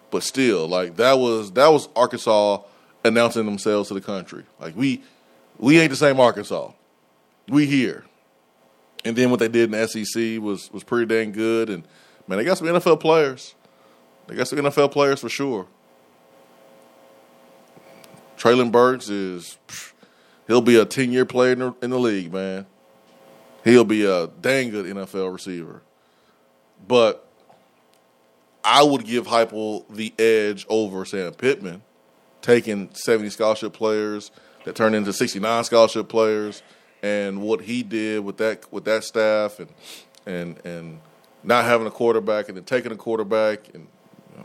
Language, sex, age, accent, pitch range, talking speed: English, male, 20-39, American, 90-115 Hz, 155 wpm